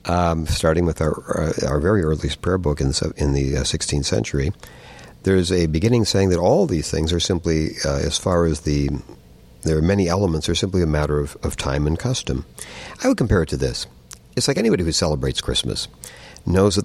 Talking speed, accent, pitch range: 210 wpm, American, 75-95 Hz